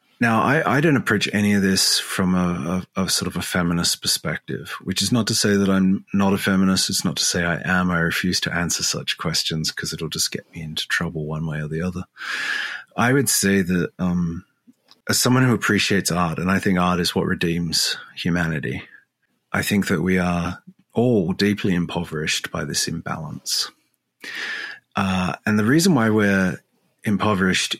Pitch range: 90-105 Hz